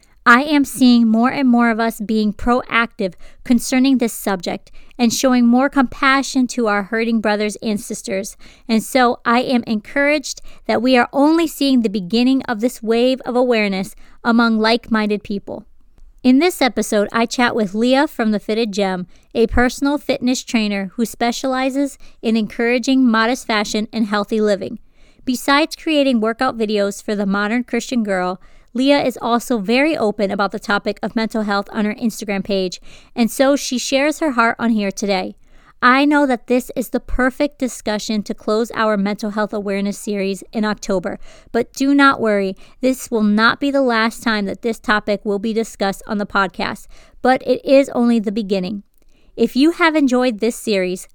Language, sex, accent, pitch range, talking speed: English, female, American, 210-255 Hz, 175 wpm